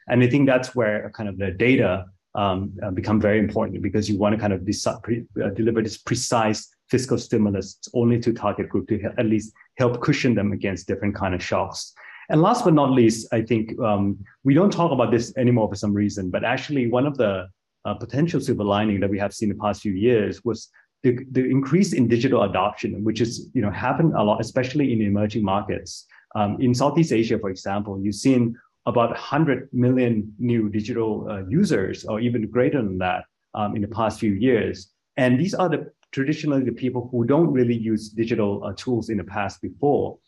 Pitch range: 105-125 Hz